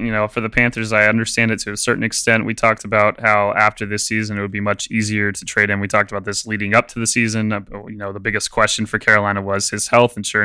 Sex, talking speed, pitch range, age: male, 275 wpm, 105-115 Hz, 20-39